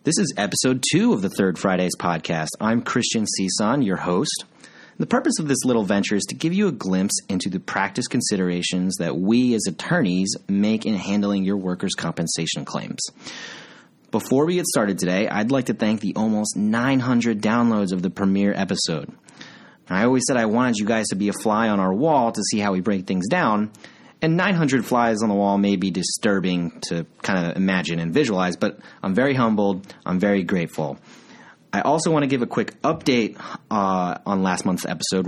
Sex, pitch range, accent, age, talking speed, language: male, 95-120 Hz, American, 30-49, 195 wpm, English